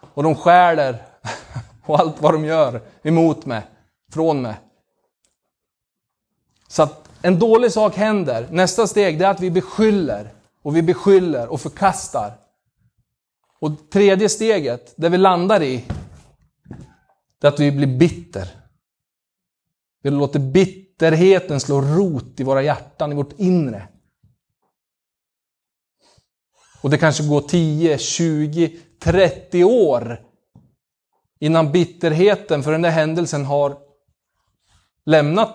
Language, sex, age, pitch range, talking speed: Swedish, male, 30-49, 135-175 Hz, 115 wpm